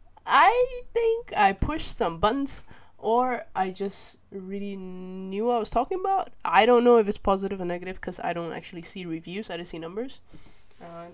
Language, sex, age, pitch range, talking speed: English, female, 10-29, 175-230 Hz, 190 wpm